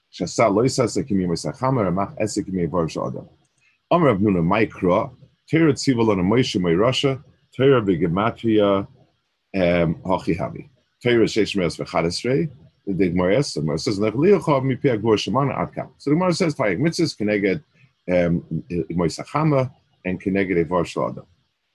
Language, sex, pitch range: English, male, 95-135 Hz